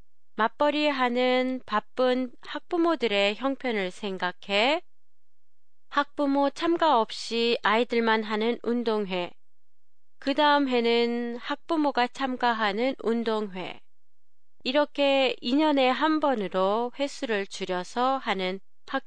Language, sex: Japanese, female